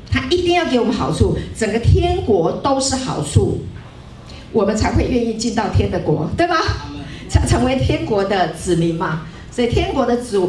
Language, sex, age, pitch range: Chinese, female, 50-69, 205-335 Hz